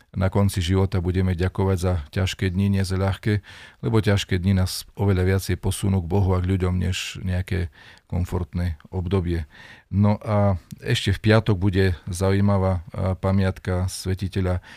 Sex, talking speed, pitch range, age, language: male, 145 wpm, 90-100 Hz, 40-59, Slovak